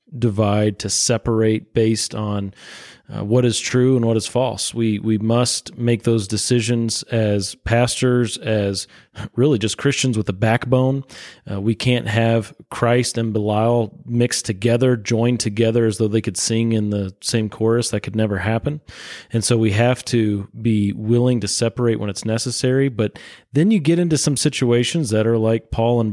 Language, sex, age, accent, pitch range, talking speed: English, male, 30-49, American, 105-125 Hz, 175 wpm